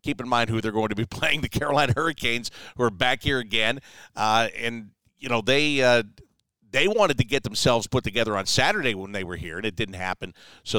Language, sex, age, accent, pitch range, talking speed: English, male, 50-69, American, 110-160 Hz, 230 wpm